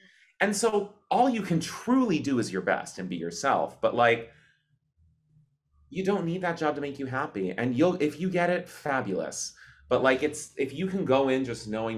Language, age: English, 30-49